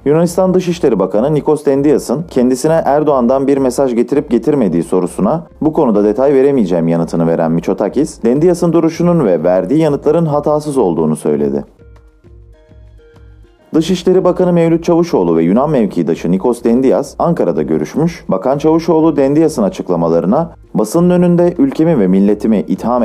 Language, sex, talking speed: Turkish, male, 125 wpm